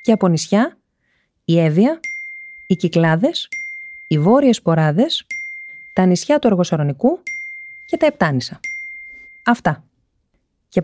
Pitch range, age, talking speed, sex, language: 160-235 Hz, 30-49, 105 wpm, female, Greek